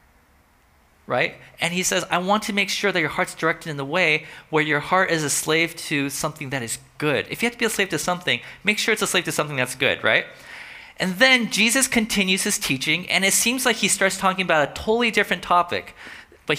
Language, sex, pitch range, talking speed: English, male, 155-200 Hz, 235 wpm